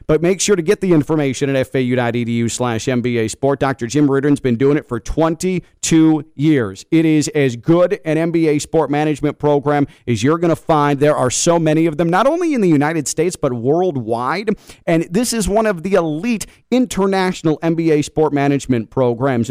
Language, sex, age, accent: English, male, 40-59, American